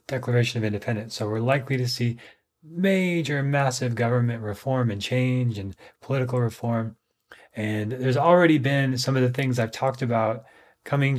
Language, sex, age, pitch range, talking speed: English, male, 30-49, 110-135 Hz, 155 wpm